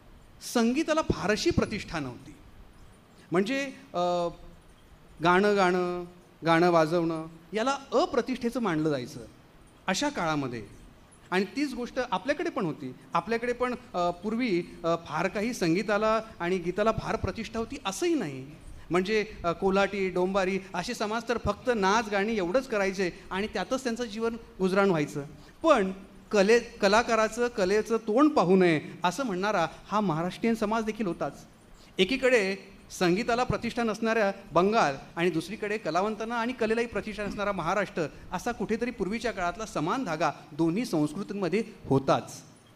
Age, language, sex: 40-59, Marathi, male